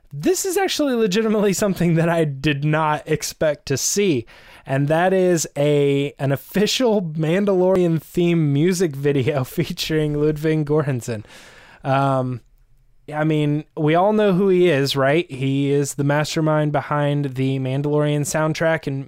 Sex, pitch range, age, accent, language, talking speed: male, 140-175 Hz, 20-39, American, English, 140 wpm